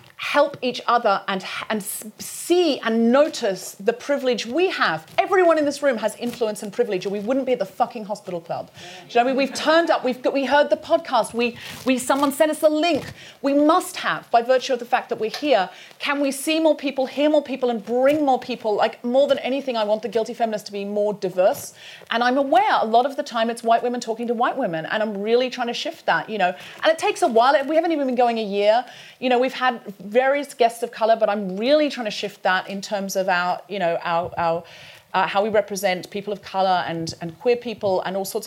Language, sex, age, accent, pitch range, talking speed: English, female, 30-49, British, 205-275 Hz, 250 wpm